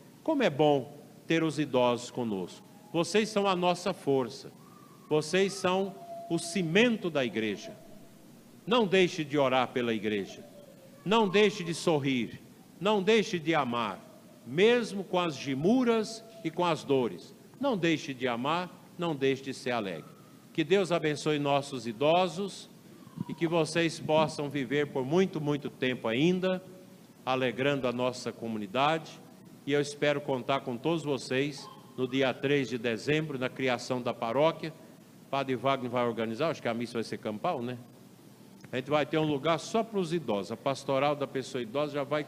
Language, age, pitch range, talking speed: Portuguese, 50-69, 130-180 Hz, 160 wpm